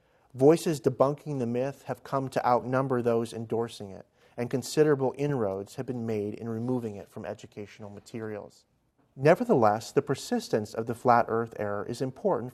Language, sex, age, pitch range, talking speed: English, male, 40-59, 115-140 Hz, 155 wpm